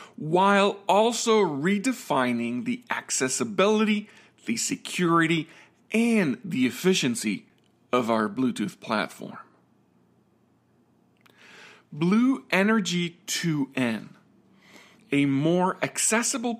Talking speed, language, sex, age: 70 wpm, English, male, 40-59